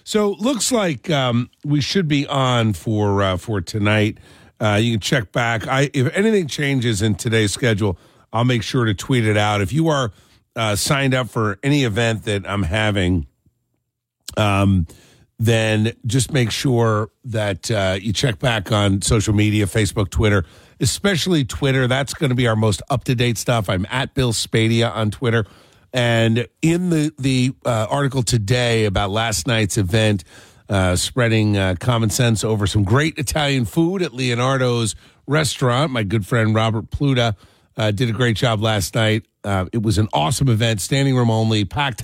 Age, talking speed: 50-69, 175 wpm